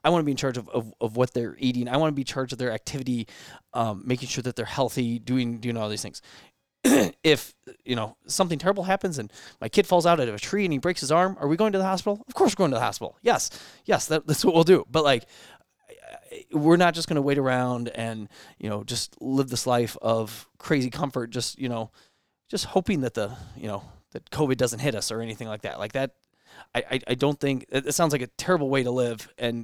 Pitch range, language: 120-145 Hz, English